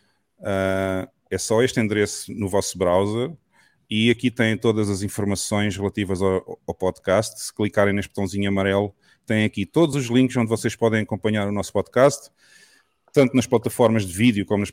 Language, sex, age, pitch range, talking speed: Portuguese, male, 30-49, 95-115 Hz, 165 wpm